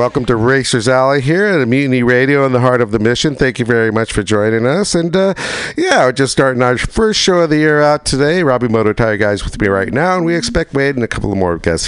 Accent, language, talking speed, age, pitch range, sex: American, English, 270 wpm, 50-69, 105-145 Hz, male